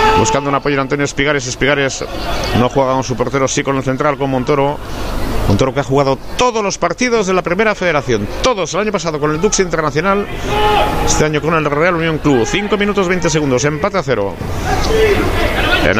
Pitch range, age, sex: 130-165 Hz, 60-79, male